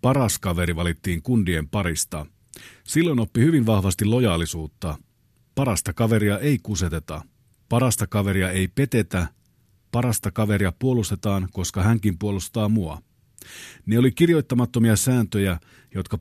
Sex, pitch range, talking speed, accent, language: male, 95-120 Hz, 110 wpm, native, Finnish